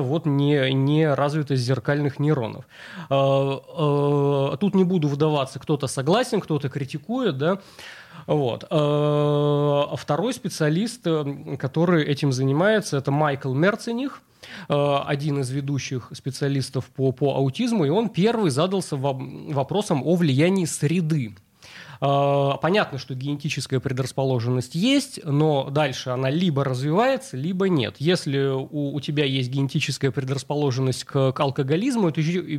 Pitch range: 135-170 Hz